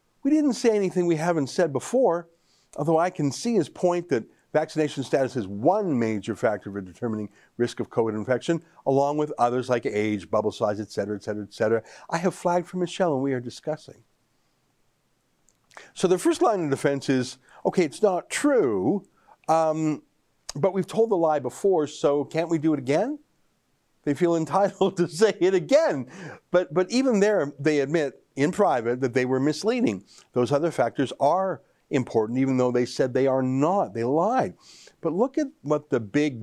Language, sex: English, male